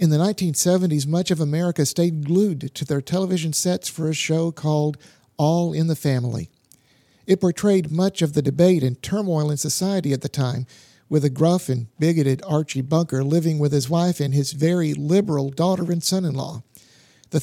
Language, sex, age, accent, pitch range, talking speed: English, male, 50-69, American, 145-180 Hz, 180 wpm